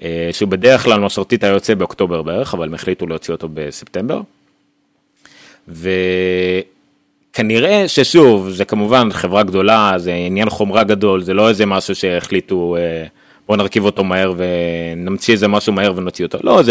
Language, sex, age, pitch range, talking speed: Hebrew, male, 30-49, 90-115 Hz, 145 wpm